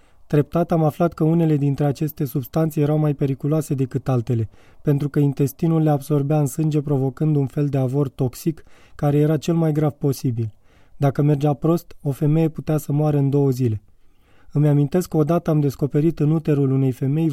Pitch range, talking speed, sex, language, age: 135-155 Hz, 185 wpm, male, Romanian, 20-39